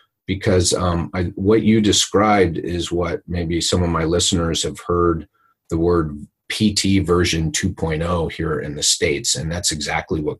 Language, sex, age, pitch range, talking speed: English, male, 40-59, 80-105 Hz, 145 wpm